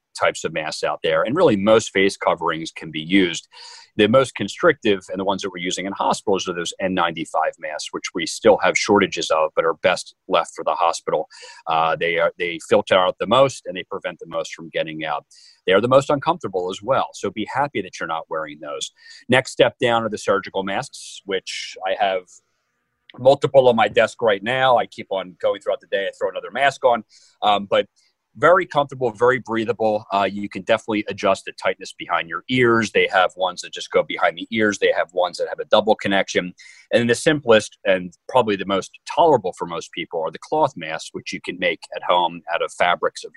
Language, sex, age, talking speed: English, male, 40-59, 220 wpm